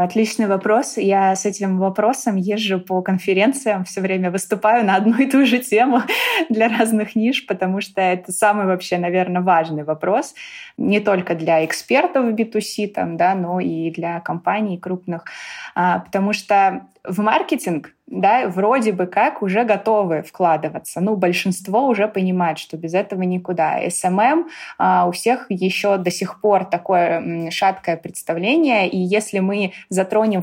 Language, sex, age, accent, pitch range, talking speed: Russian, female, 20-39, native, 180-215 Hz, 145 wpm